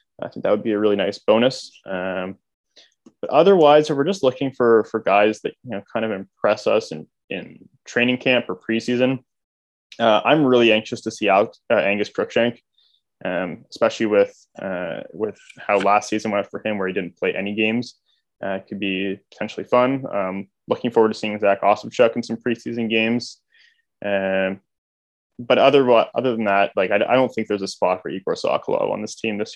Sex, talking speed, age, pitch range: male, 200 wpm, 20-39, 100-120 Hz